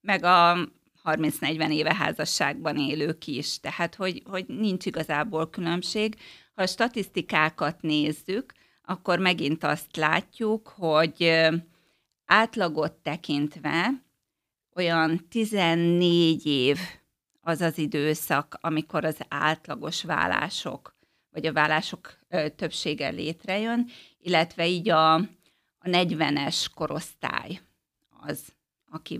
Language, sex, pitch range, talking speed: Hungarian, female, 155-185 Hz, 95 wpm